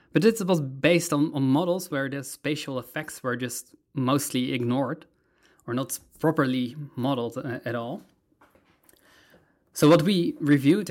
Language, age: English, 20-39